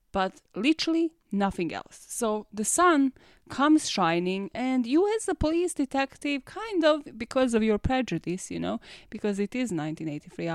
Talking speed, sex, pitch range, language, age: 155 wpm, female, 195-280 Hz, English, 20-39